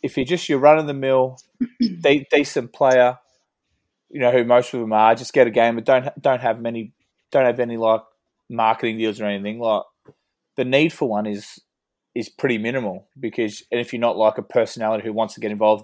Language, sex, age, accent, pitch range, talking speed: English, male, 20-39, Australian, 110-125 Hz, 215 wpm